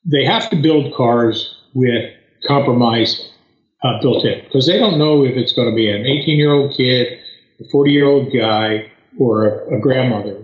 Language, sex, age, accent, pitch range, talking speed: English, male, 50-69, American, 115-130 Hz, 190 wpm